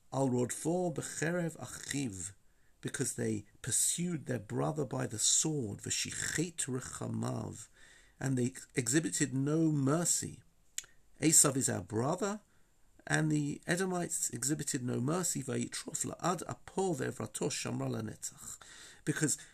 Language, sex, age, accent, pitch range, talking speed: English, male, 50-69, British, 125-160 Hz, 75 wpm